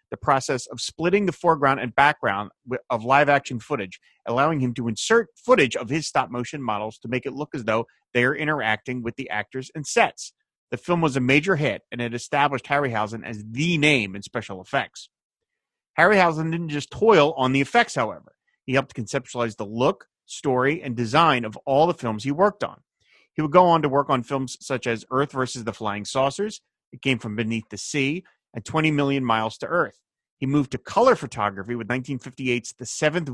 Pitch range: 120-150 Hz